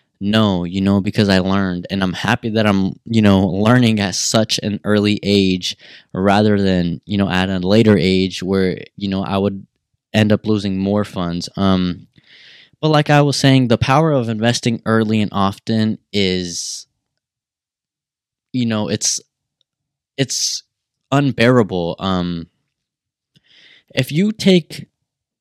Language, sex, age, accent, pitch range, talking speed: English, male, 20-39, American, 95-120 Hz, 140 wpm